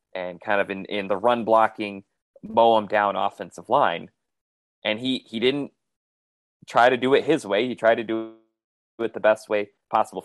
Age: 20-39